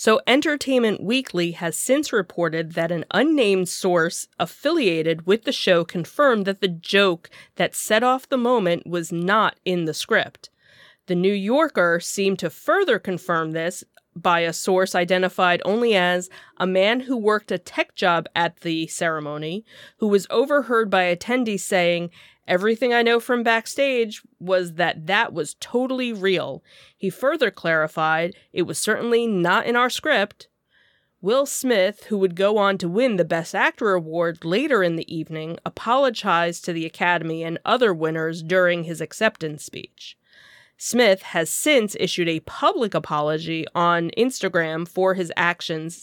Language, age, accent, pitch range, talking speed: English, 30-49, American, 170-225 Hz, 155 wpm